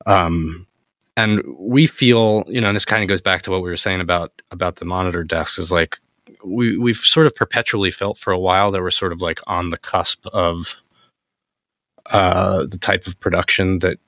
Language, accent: English, American